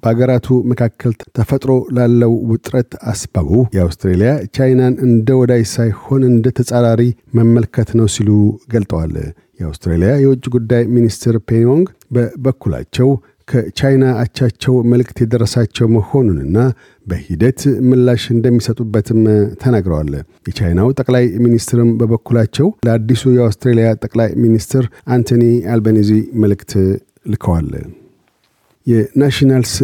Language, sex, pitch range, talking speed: Amharic, male, 110-125 Hz, 85 wpm